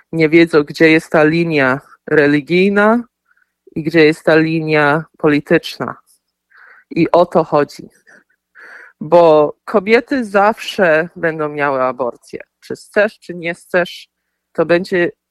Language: Polish